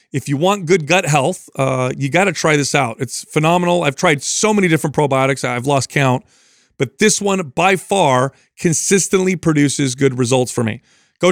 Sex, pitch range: male, 135-180 Hz